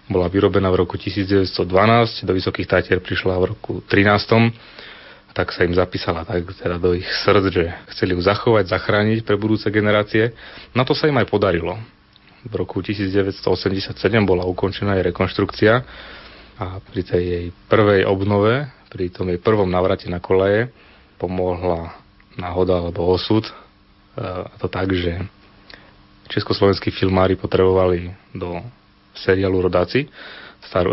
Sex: male